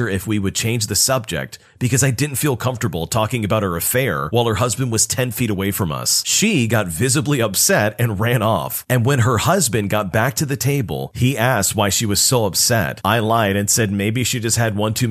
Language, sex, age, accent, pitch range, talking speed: English, male, 40-59, American, 100-125 Hz, 225 wpm